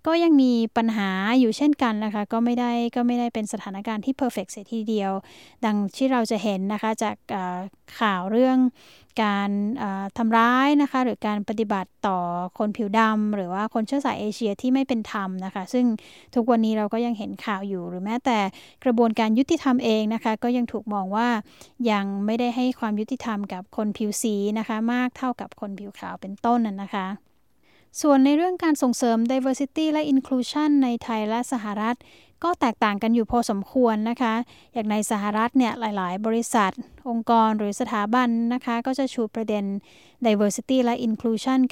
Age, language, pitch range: 20-39, Thai, 210-250 Hz